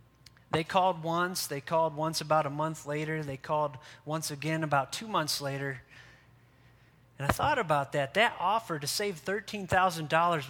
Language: English